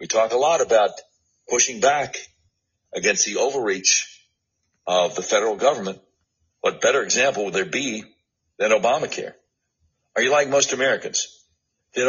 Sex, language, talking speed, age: male, English, 140 wpm, 60-79